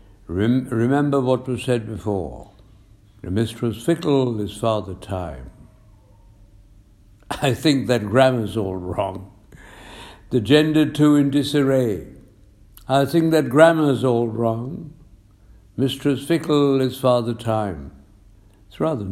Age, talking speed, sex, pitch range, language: 60-79, 105 wpm, male, 100-125 Hz, English